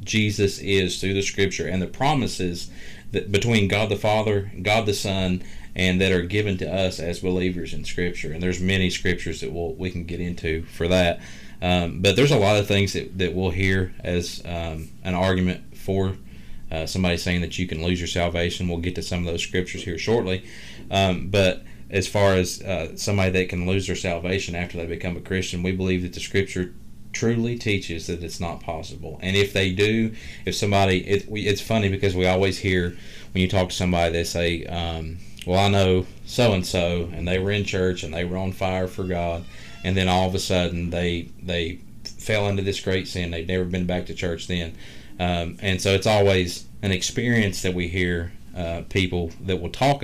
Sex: male